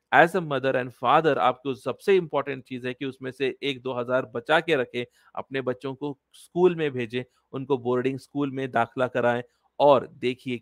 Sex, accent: male, native